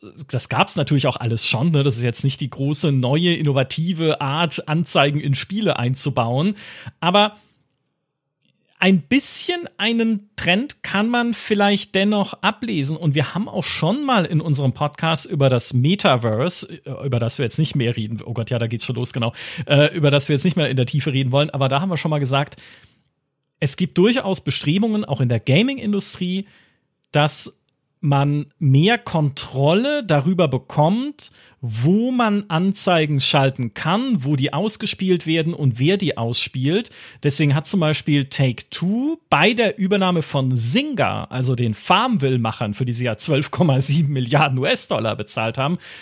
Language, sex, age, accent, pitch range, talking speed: German, male, 40-59, German, 135-190 Hz, 165 wpm